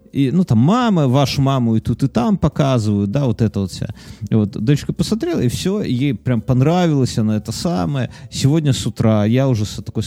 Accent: native